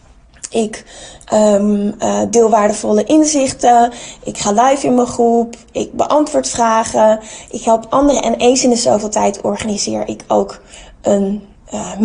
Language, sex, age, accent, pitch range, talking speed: Dutch, female, 20-39, Dutch, 215-255 Hz, 145 wpm